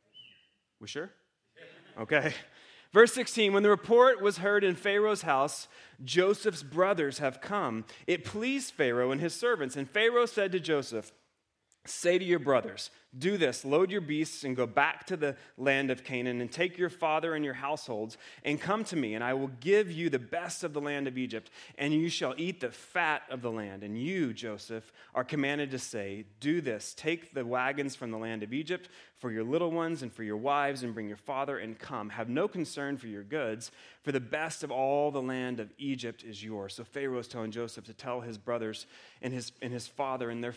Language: English